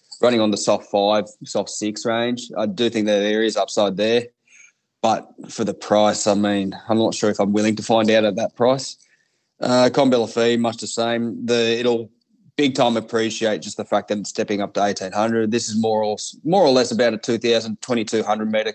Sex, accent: male, Australian